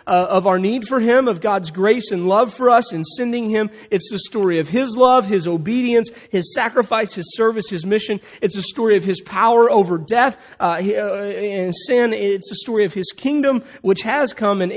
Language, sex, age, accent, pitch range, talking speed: English, male, 40-59, American, 185-230 Hz, 205 wpm